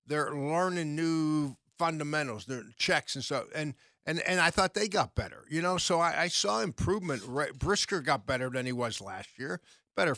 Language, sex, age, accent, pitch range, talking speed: English, male, 50-69, American, 135-165 Hz, 195 wpm